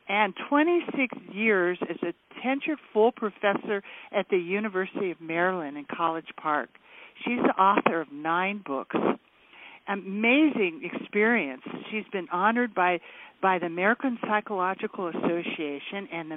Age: 50-69